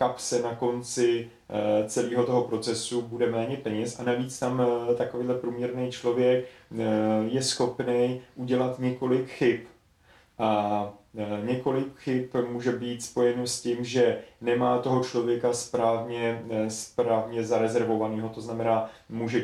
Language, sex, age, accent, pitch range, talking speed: Czech, male, 30-49, native, 115-130 Hz, 115 wpm